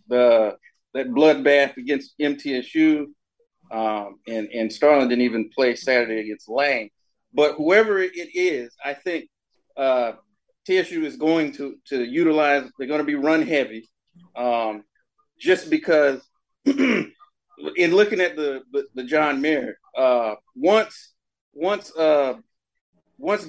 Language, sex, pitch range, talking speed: English, male, 140-185 Hz, 130 wpm